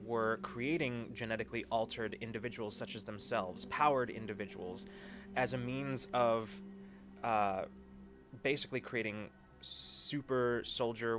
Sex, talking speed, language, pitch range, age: male, 100 wpm, English, 100-130 Hz, 20-39